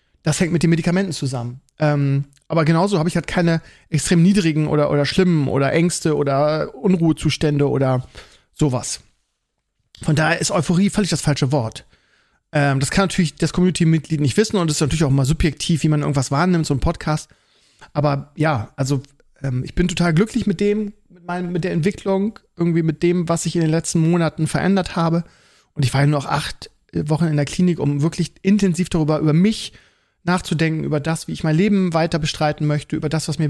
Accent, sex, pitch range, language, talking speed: German, male, 145-180 Hz, German, 200 wpm